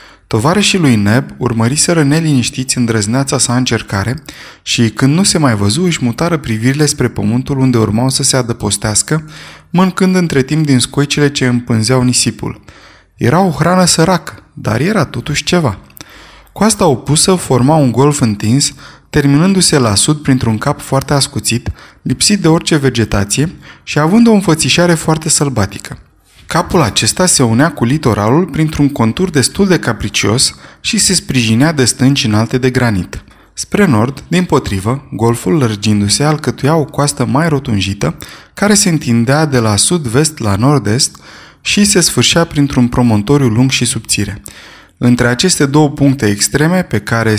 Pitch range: 115-155 Hz